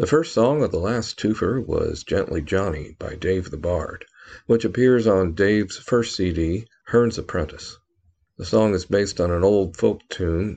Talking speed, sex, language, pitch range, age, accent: 175 wpm, male, English, 85-110 Hz, 50-69, American